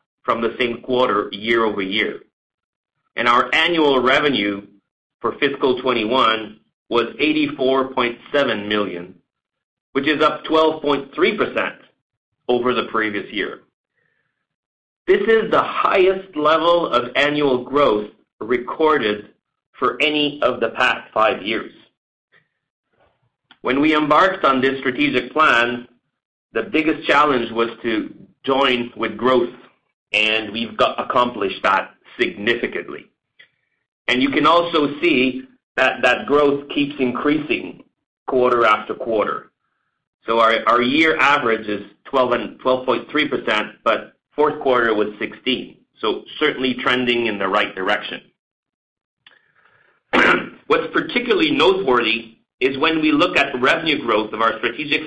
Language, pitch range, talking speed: English, 115-150 Hz, 120 wpm